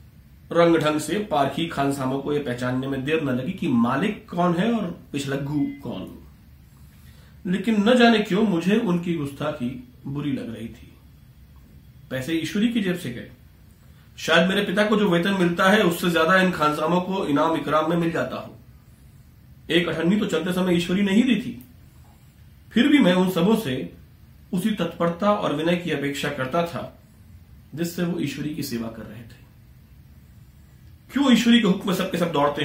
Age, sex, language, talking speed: 40-59, male, Hindi, 175 wpm